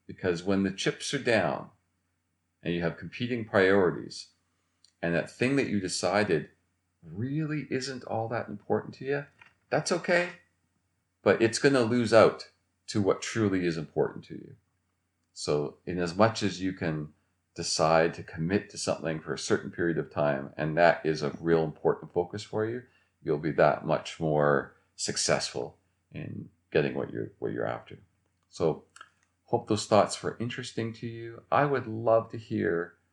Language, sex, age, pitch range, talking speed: English, male, 40-59, 85-110 Hz, 165 wpm